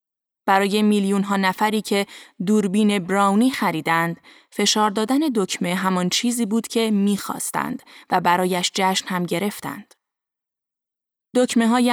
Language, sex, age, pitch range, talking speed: Persian, female, 20-39, 185-220 Hz, 105 wpm